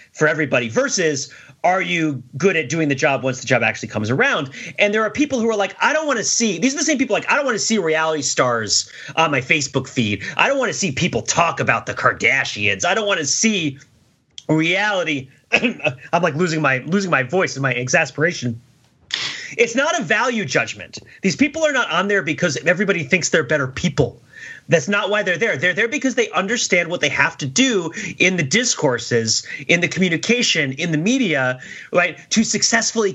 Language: English